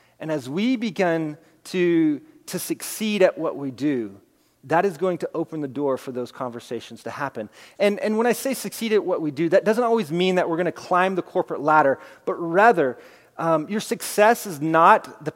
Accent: American